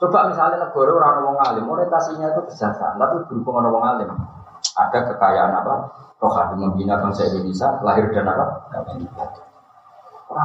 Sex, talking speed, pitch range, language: male, 160 wpm, 115-175 Hz, Malay